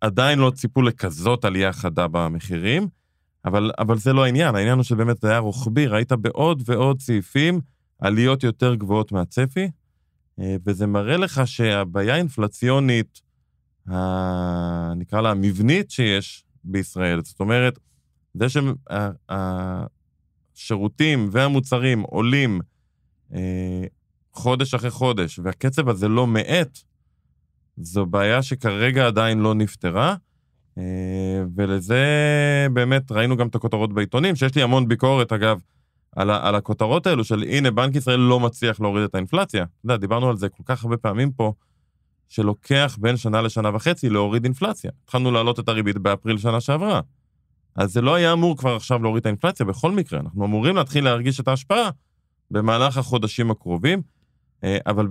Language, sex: Hebrew, male